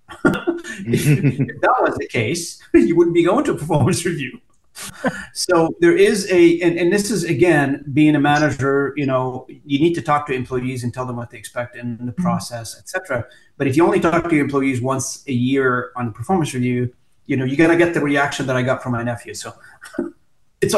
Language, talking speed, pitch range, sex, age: English, 215 wpm, 125-160 Hz, male, 30-49